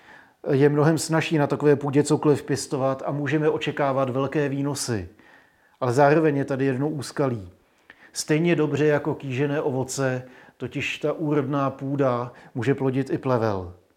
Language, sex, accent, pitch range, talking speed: Czech, male, native, 135-150 Hz, 140 wpm